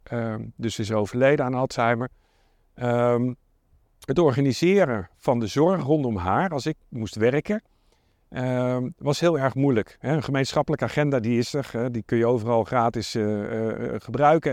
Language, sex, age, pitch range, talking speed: Dutch, male, 50-69, 115-150 Hz, 170 wpm